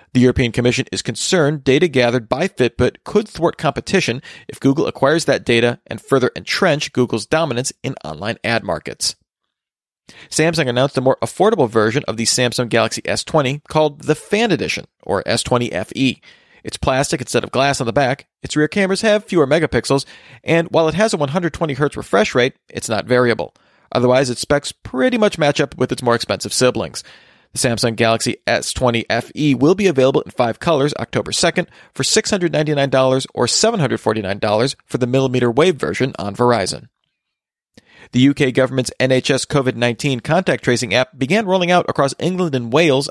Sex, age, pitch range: male, 40-59, 120-155 Hz